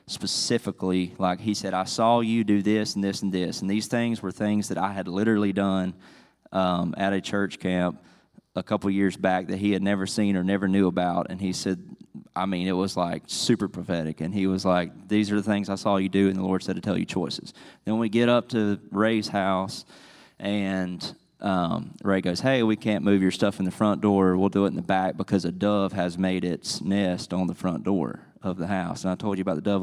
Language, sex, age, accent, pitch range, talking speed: English, male, 20-39, American, 90-100 Hz, 240 wpm